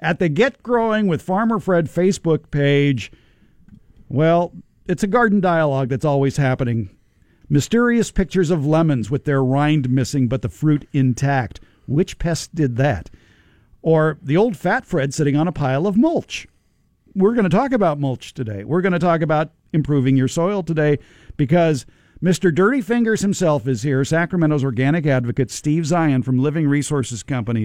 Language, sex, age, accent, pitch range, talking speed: English, male, 50-69, American, 130-175 Hz, 165 wpm